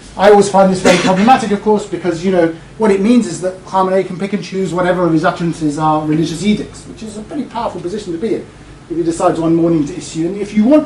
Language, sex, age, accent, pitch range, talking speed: English, male, 40-59, British, 150-210 Hz, 270 wpm